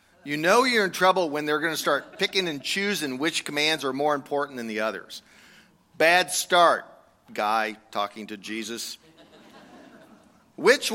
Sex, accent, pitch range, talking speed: male, American, 130-195 Hz, 155 wpm